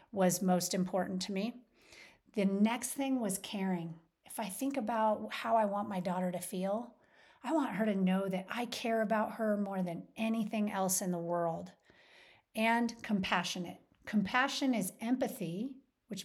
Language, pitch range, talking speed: English, 185-235 Hz, 165 wpm